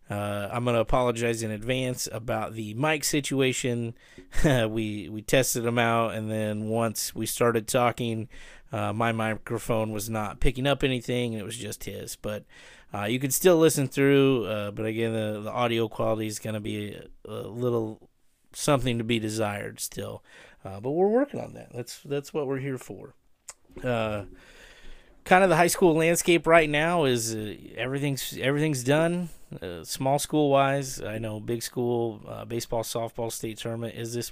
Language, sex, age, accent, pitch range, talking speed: English, male, 30-49, American, 110-130 Hz, 175 wpm